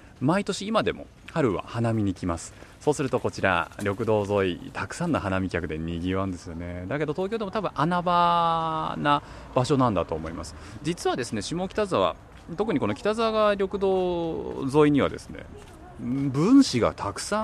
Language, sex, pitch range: Japanese, male, 95-155 Hz